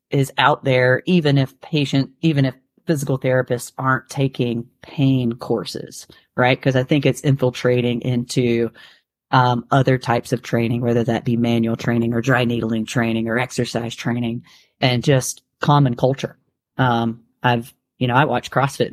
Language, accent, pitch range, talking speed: English, American, 120-140 Hz, 155 wpm